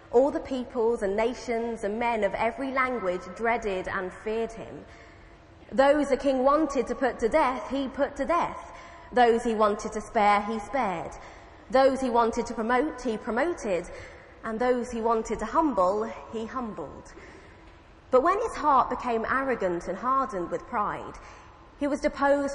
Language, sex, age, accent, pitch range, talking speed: English, female, 20-39, British, 210-265 Hz, 160 wpm